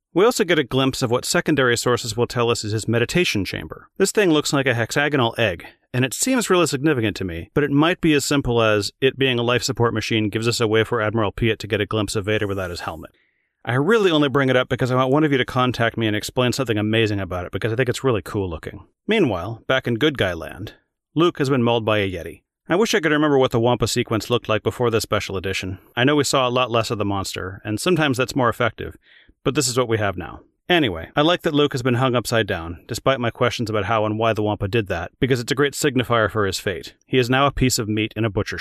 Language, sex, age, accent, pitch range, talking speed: English, male, 40-59, American, 105-135 Hz, 270 wpm